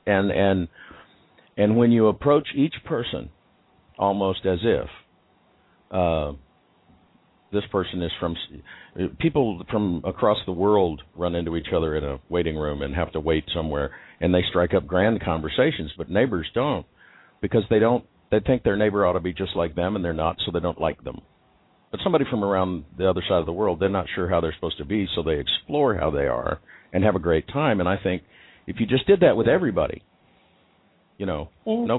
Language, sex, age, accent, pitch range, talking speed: English, male, 50-69, American, 85-115 Hz, 205 wpm